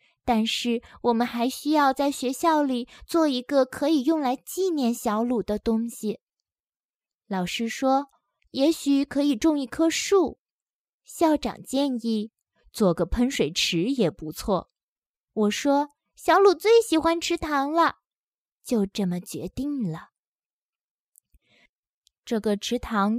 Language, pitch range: Chinese, 220-305 Hz